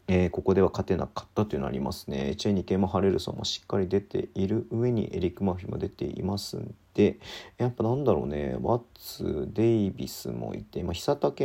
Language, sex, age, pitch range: Japanese, male, 40-59, 95-115 Hz